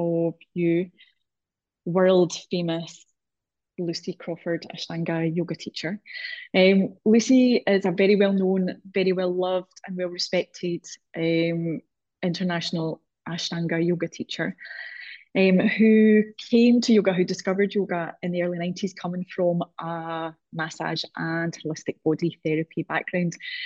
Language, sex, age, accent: English, female, 20-39, British